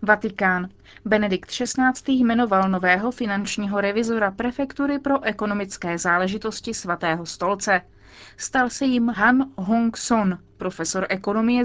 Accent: native